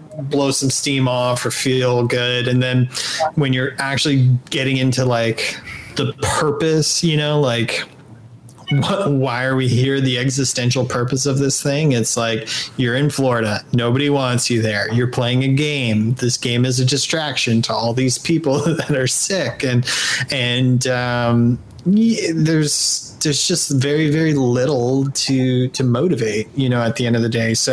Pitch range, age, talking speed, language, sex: 120-140 Hz, 30-49, 165 wpm, English, male